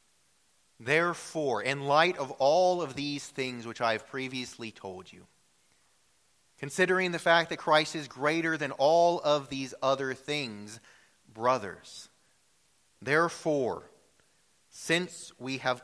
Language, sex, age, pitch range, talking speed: English, male, 30-49, 95-145 Hz, 120 wpm